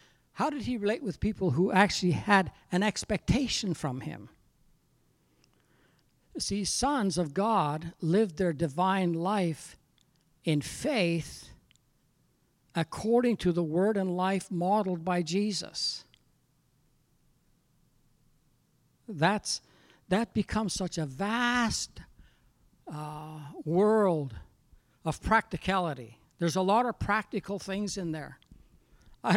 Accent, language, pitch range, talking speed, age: American, English, 160-205 Hz, 105 wpm, 60-79